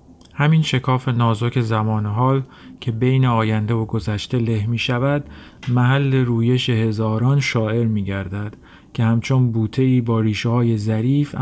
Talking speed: 135 wpm